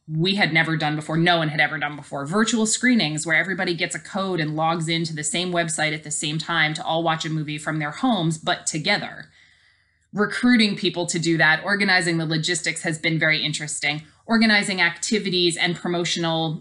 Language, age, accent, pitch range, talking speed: English, 20-39, American, 160-195 Hz, 195 wpm